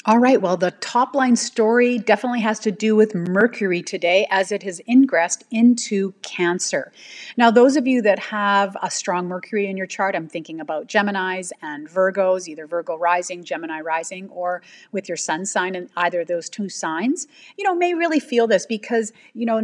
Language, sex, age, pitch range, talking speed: English, female, 40-59, 185-235 Hz, 195 wpm